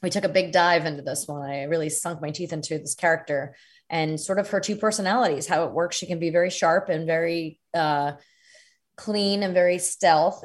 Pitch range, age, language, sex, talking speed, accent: 165-215 Hz, 20-39, English, female, 210 wpm, American